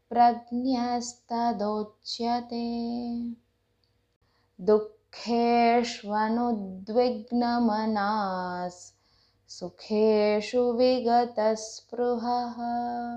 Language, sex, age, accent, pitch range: Hindi, female, 20-39, native, 190-240 Hz